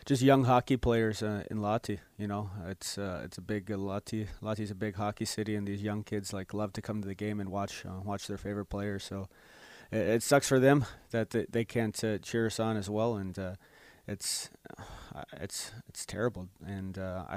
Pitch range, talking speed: 95-110 Hz, 220 wpm